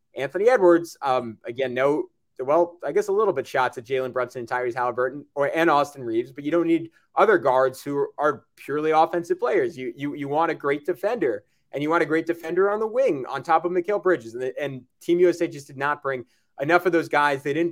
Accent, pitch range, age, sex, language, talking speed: American, 140-170 Hz, 20-39, male, English, 225 wpm